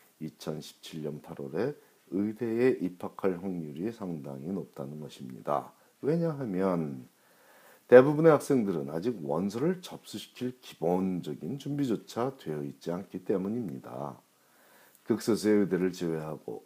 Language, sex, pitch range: Korean, male, 80-120 Hz